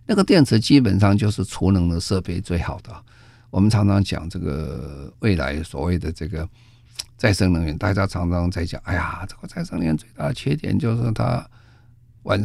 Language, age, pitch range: Chinese, 50-69, 90-120 Hz